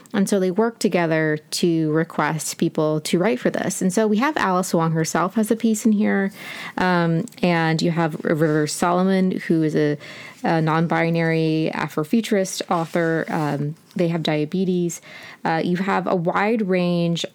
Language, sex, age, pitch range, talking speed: English, female, 20-39, 160-195 Hz, 165 wpm